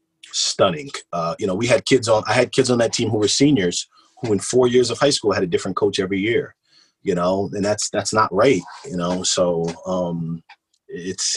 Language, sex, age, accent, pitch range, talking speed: English, male, 30-49, American, 90-135 Hz, 220 wpm